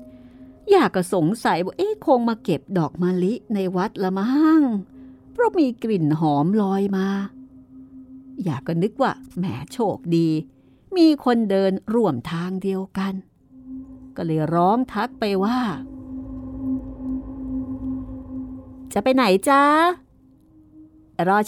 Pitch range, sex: 170-260 Hz, female